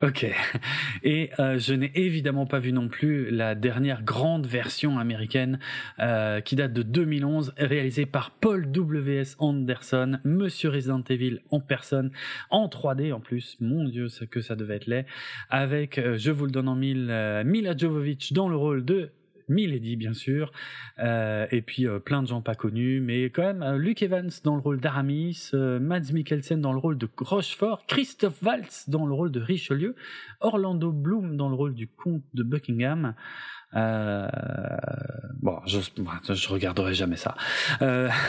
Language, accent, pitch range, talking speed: French, French, 125-165 Hz, 170 wpm